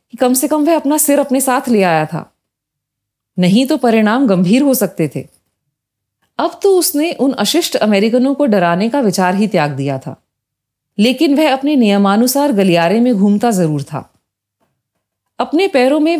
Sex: female